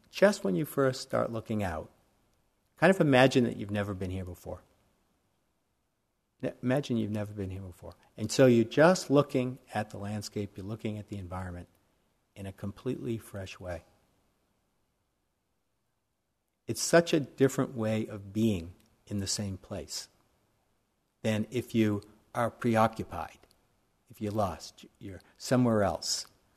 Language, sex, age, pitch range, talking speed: English, male, 60-79, 95-125 Hz, 140 wpm